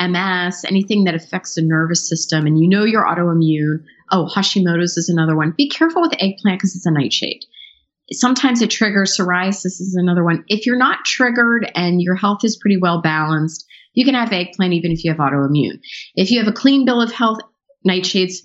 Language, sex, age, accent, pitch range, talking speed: English, female, 30-49, American, 160-210 Hz, 200 wpm